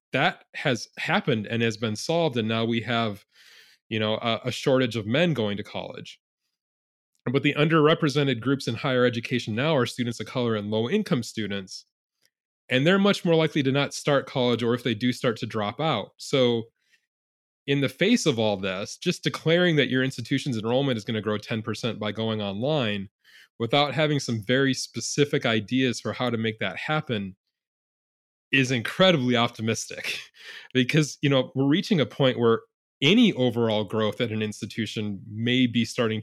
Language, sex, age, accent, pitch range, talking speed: English, male, 20-39, American, 110-135 Hz, 175 wpm